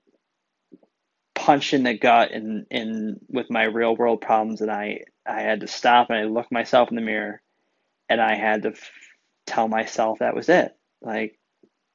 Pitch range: 110-130 Hz